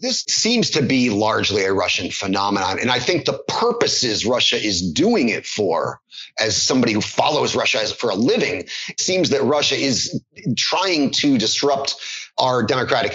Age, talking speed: 30-49, 165 wpm